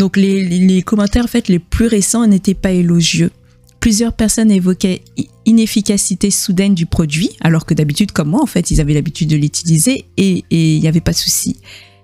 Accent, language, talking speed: French, French, 195 wpm